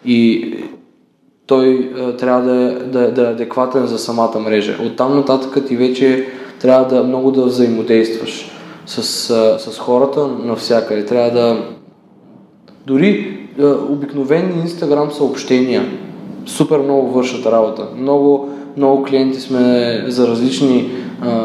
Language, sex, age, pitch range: Bulgarian, male, 20-39, 125-155 Hz